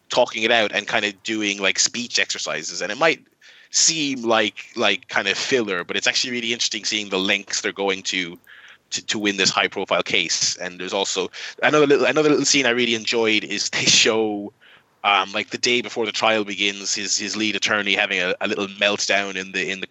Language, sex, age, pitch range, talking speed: English, male, 20-39, 100-120 Hz, 215 wpm